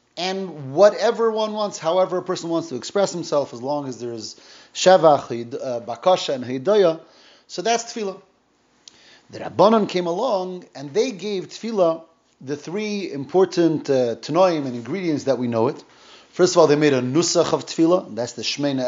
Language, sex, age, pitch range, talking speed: English, male, 30-49, 135-195 Hz, 170 wpm